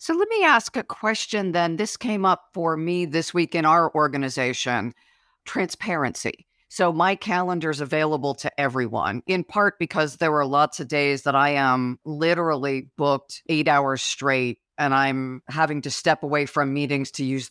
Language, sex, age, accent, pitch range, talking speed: English, female, 50-69, American, 135-160 Hz, 175 wpm